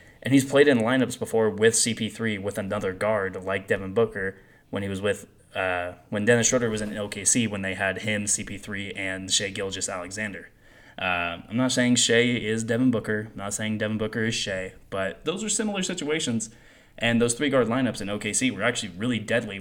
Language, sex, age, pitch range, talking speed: English, male, 10-29, 100-120 Hz, 200 wpm